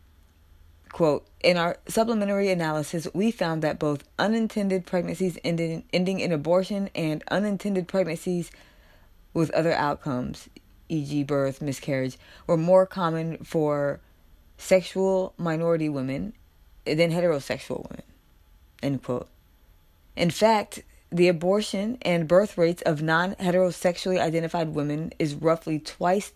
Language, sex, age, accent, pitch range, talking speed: English, female, 20-39, American, 130-180 Hz, 110 wpm